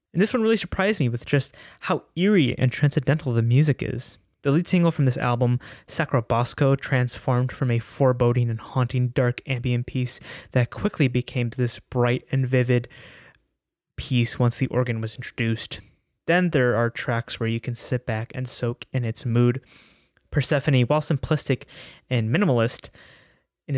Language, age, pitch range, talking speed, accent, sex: English, 20-39, 115-130 Hz, 165 wpm, American, male